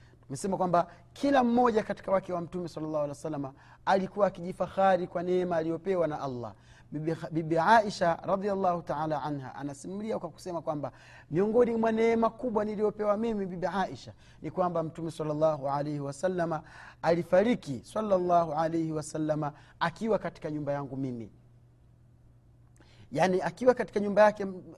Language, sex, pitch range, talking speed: Swahili, male, 150-215 Hz, 140 wpm